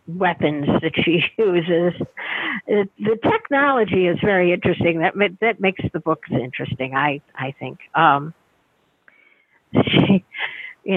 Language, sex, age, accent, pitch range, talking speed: English, female, 50-69, American, 155-195 Hz, 115 wpm